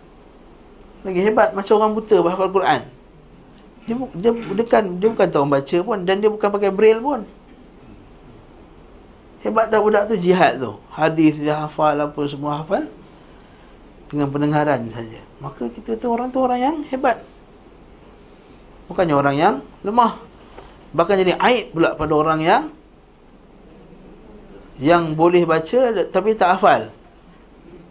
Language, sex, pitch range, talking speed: Malay, male, 140-200 Hz, 130 wpm